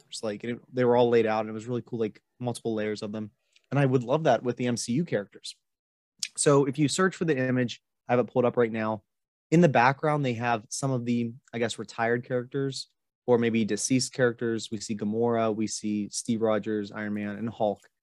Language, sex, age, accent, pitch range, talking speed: English, male, 20-39, American, 115-130 Hz, 220 wpm